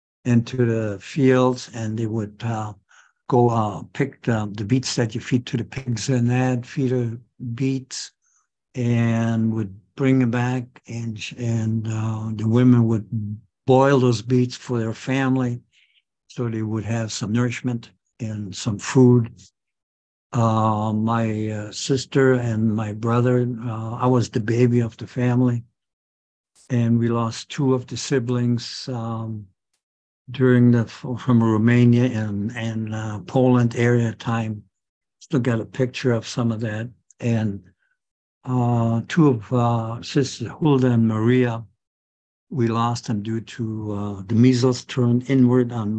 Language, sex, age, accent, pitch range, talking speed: English, male, 60-79, American, 110-125 Hz, 140 wpm